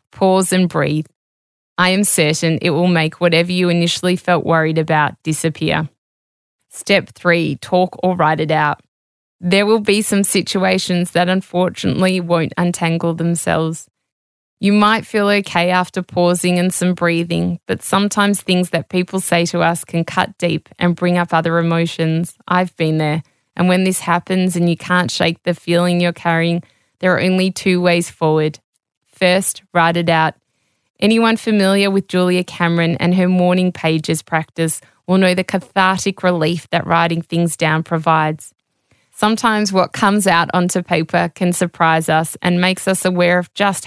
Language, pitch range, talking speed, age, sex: English, 165-185 Hz, 160 wpm, 20-39, female